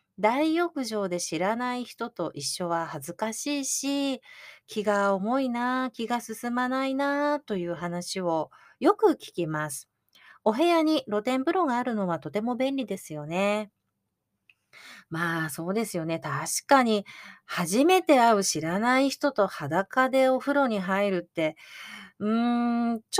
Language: Japanese